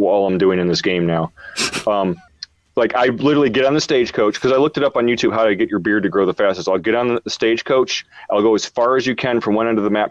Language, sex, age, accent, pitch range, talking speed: English, male, 30-49, American, 110-155 Hz, 295 wpm